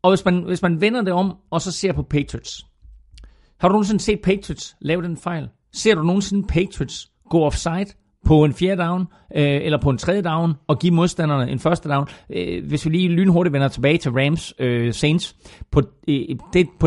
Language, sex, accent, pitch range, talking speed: Danish, male, native, 130-175 Hz, 190 wpm